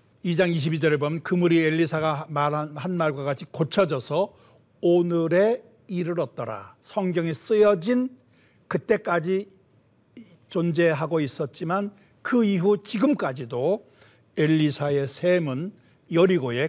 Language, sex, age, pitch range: Korean, male, 60-79, 140-190 Hz